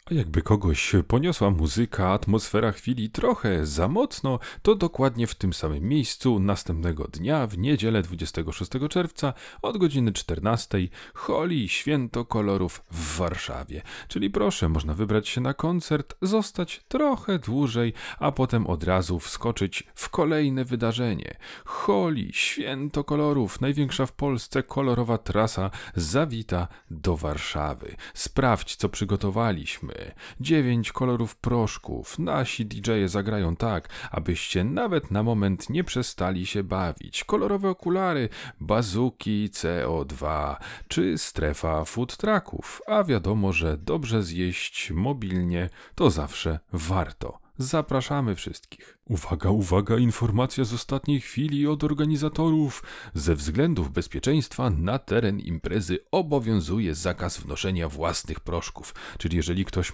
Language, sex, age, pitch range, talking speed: Polish, male, 40-59, 90-130 Hz, 120 wpm